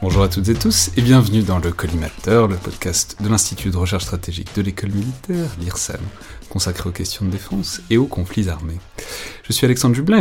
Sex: male